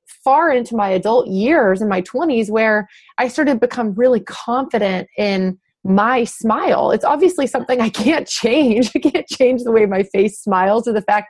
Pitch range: 195-245 Hz